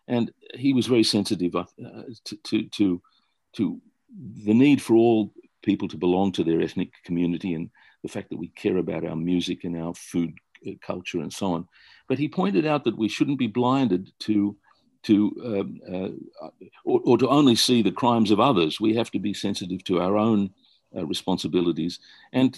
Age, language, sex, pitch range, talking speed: 50-69, English, male, 90-120 Hz, 185 wpm